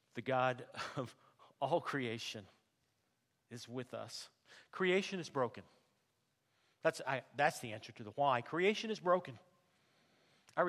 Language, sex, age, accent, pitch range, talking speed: English, male, 50-69, American, 130-185 Hz, 130 wpm